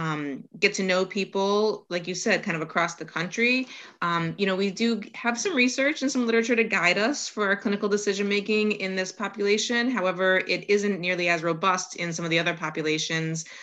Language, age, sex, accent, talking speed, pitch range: English, 30-49, female, American, 205 wpm, 160-195 Hz